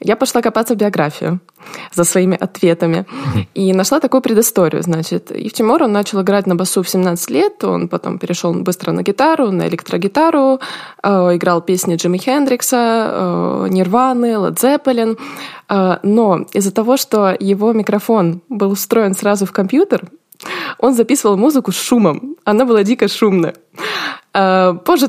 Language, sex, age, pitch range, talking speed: Russian, female, 20-39, 180-245 Hz, 135 wpm